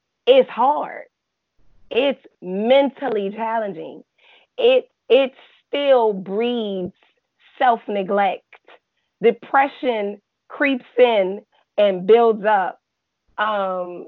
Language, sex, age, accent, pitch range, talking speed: English, female, 30-49, American, 195-240 Hz, 75 wpm